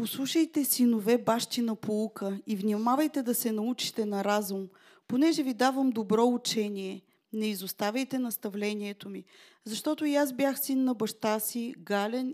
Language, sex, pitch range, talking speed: Bulgarian, female, 205-255 Hz, 145 wpm